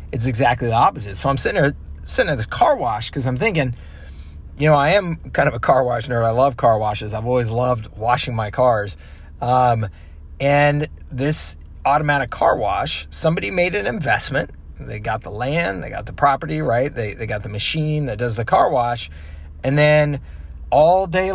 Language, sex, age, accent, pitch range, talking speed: English, male, 30-49, American, 90-145 Hz, 195 wpm